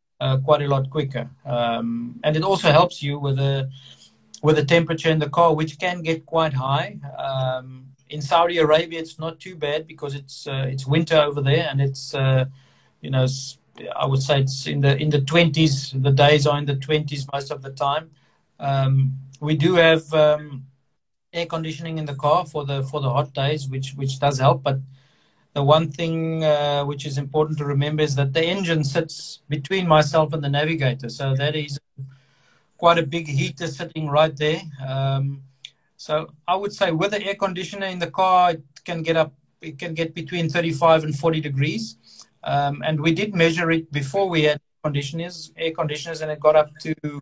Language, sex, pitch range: English, male, 135-160 Hz